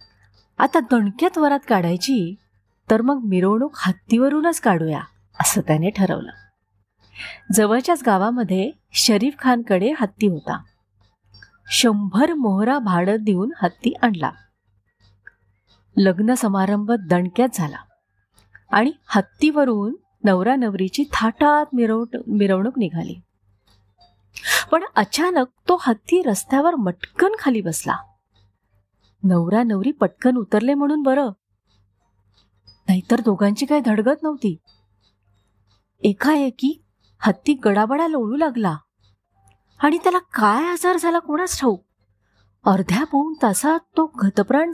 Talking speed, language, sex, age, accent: 95 wpm, Marathi, female, 30-49, native